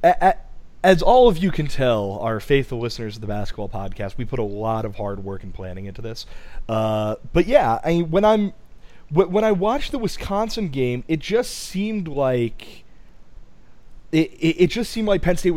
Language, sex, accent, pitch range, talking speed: English, male, American, 110-155 Hz, 185 wpm